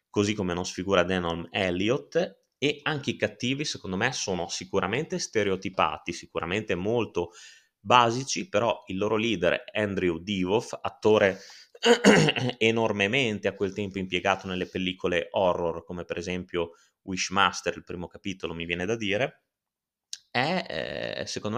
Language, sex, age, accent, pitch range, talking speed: Italian, male, 30-49, native, 95-125 Hz, 130 wpm